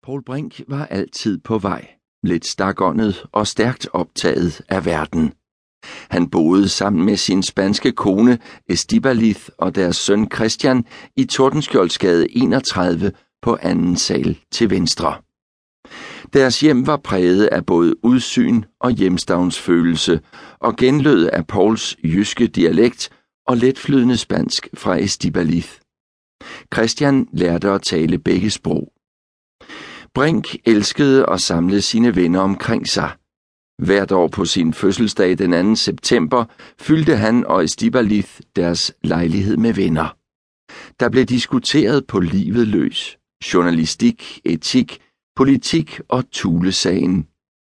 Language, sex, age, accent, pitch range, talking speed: Danish, male, 60-79, native, 90-130 Hz, 120 wpm